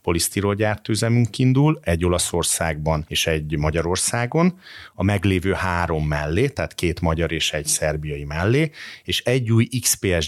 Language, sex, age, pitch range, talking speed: Hungarian, male, 30-49, 85-110 Hz, 130 wpm